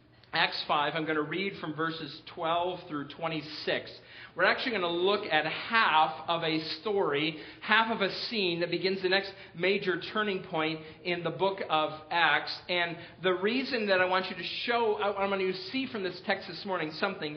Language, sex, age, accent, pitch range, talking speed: English, male, 40-59, American, 150-195 Hz, 195 wpm